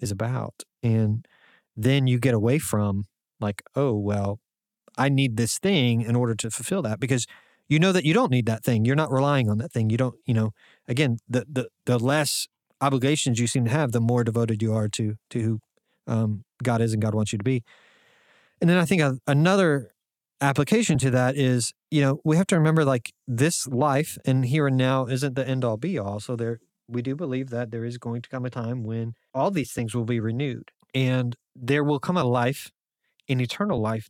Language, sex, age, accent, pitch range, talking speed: English, male, 30-49, American, 115-145 Hz, 215 wpm